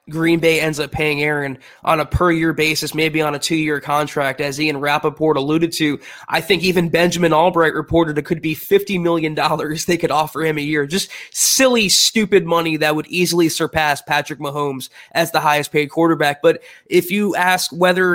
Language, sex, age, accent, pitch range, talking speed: English, male, 20-39, American, 150-175 Hz, 195 wpm